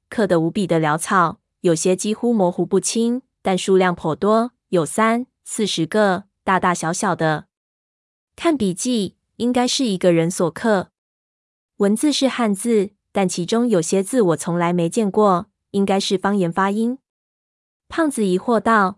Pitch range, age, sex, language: 180-215 Hz, 20-39, female, Chinese